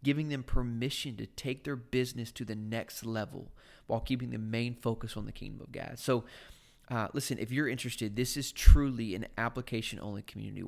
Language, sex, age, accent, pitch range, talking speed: English, male, 20-39, American, 110-130 Hz, 185 wpm